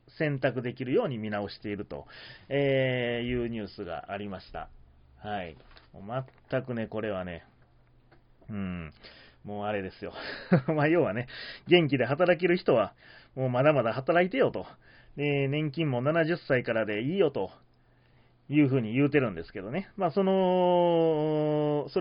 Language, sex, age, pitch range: Japanese, male, 30-49, 110-150 Hz